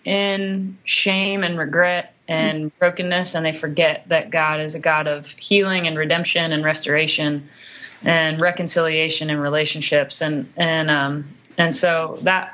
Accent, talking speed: American, 145 wpm